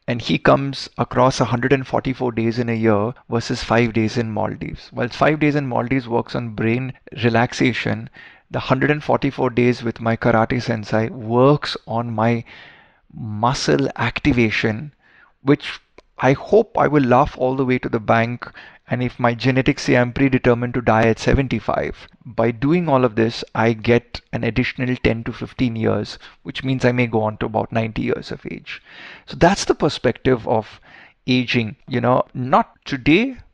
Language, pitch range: Hindi, 115-140 Hz